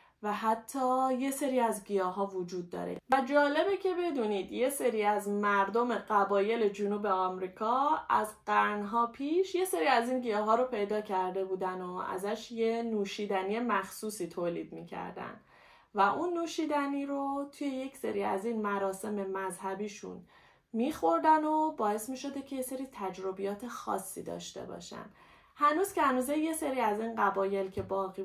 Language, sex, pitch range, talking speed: Persian, female, 195-270 Hz, 155 wpm